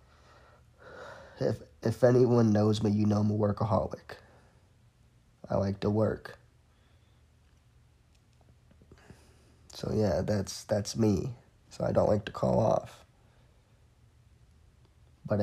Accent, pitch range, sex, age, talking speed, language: American, 95-110 Hz, male, 20-39, 105 wpm, English